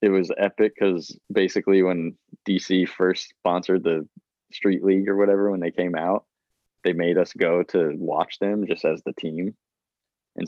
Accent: American